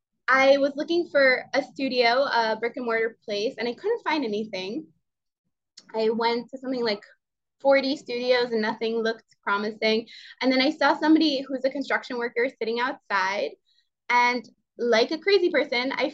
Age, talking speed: 20-39, 165 wpm